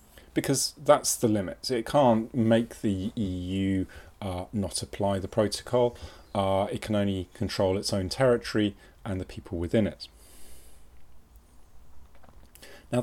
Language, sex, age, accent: English, male, 30-49, British